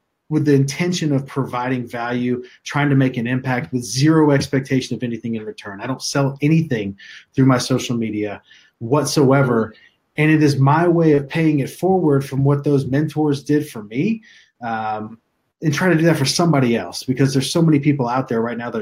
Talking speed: 200 wpm